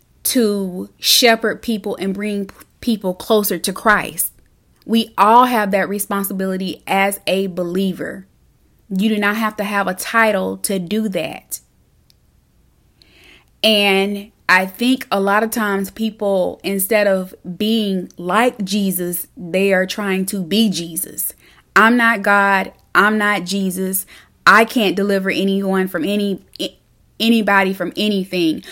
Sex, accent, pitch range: female, American, 185-215 Hz